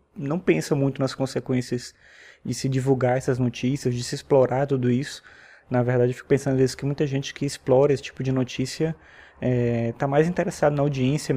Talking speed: 190 wpm